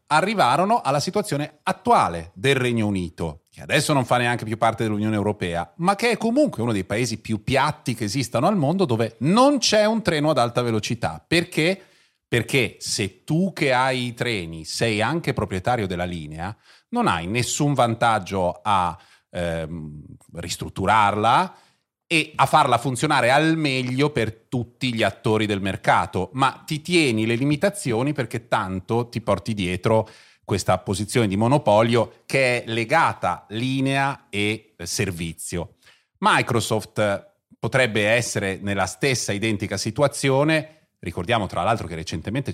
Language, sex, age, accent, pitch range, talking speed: Italian, male, 30-49, native, 95-135 Hz, 140 wpm